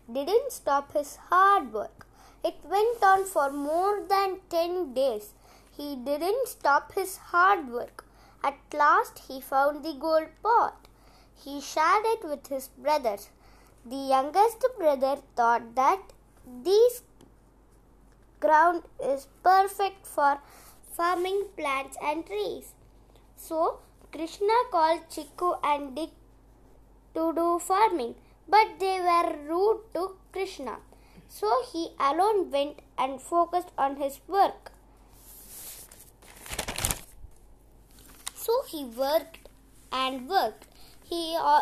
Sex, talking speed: female, 110 wpm